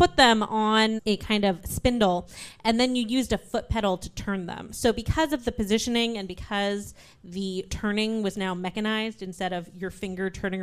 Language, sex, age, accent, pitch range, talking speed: English, female, 20-39, American, 185-235 Hz, 190 wpm